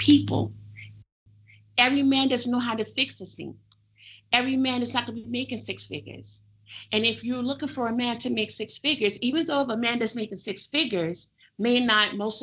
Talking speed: 210 wpm